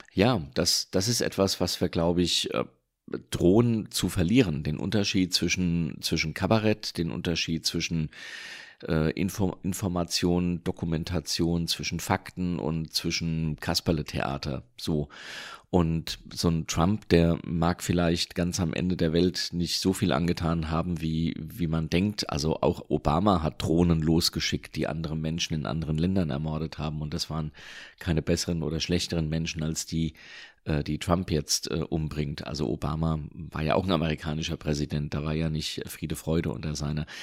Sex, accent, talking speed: male, German, 155 wpm